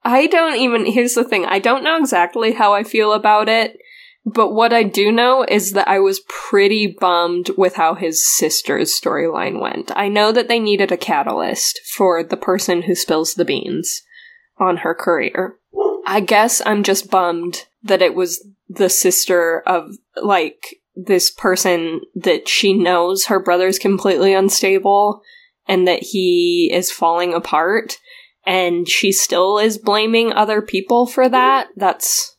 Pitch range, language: 185-245 Hz, English